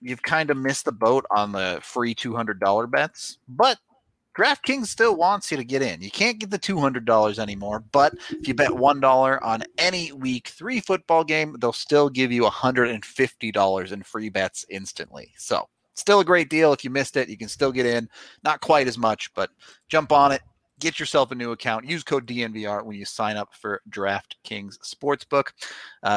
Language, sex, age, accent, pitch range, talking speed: English, male, 30-49, American, 110-150 Hz, 190 wpm